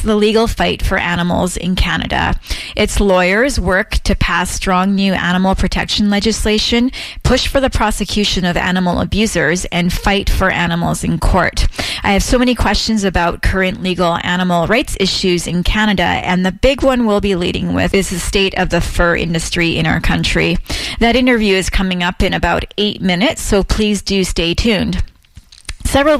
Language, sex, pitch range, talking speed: English, female, 175-210 Hz, 175 wpm